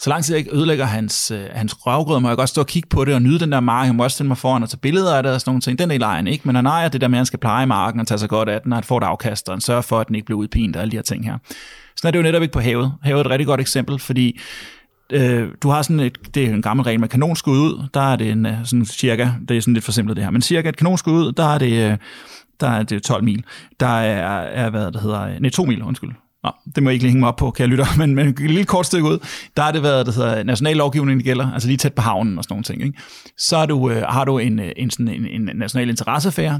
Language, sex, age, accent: Danish, male, 30-49, native